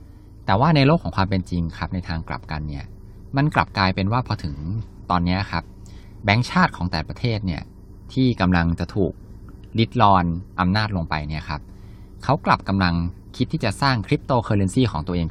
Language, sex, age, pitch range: Thai, male, 20-39, 85-110 Hz